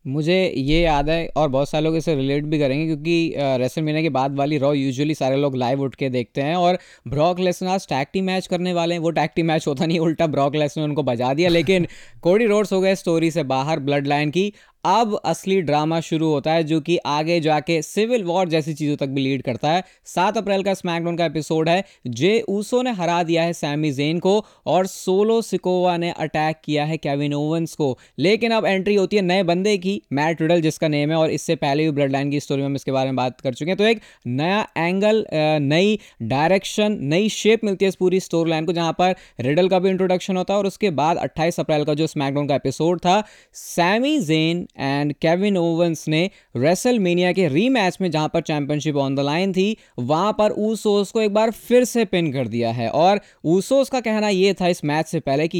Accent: native